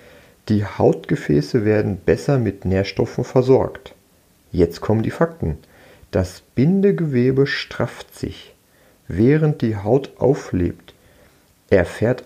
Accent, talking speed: German, 100 wpm